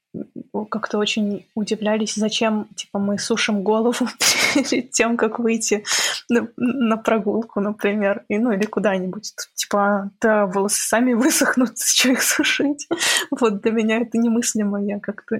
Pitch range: 205-235 Hz